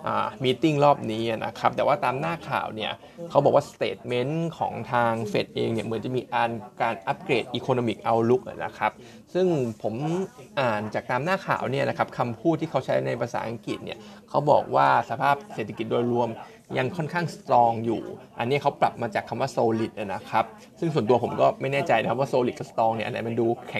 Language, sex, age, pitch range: Thai, male, 20-39, 115-145 Hz